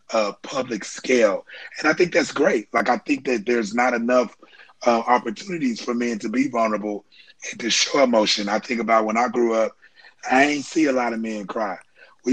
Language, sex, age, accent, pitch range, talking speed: English, male, 30-49, American, 115-135 Hz, 205 wpm